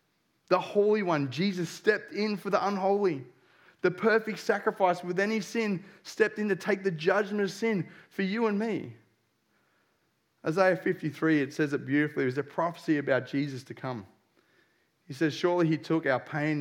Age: 30-49